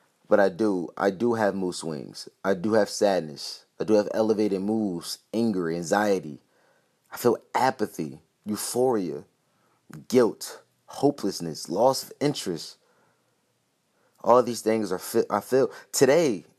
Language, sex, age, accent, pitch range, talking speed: English, male, 20-39, American, 95-115 Hz, 135 wpm